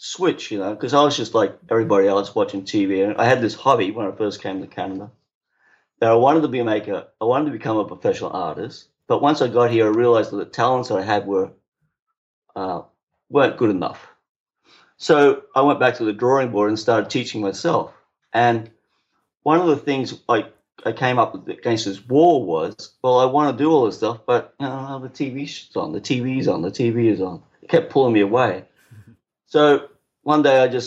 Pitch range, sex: 110-145 Hz, male